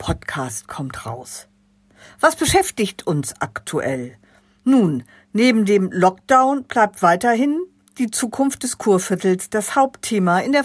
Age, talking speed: 50-69, 120 wpm